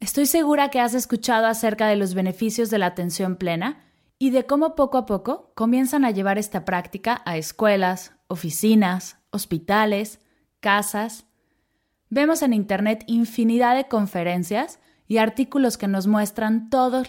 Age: 20-39